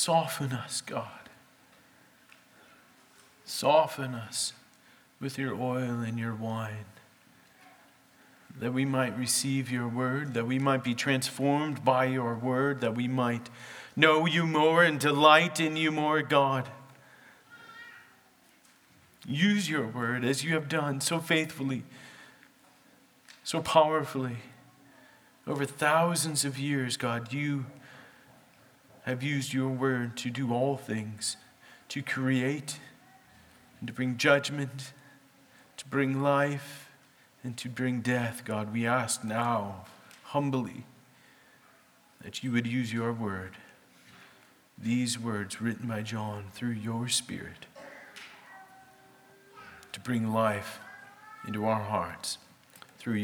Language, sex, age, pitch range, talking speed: English, male, 40-59, 115-140 Hz, 115 wpm